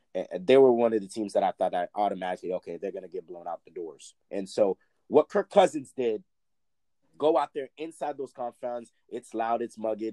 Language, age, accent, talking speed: English, 30-49, American, 220 wpm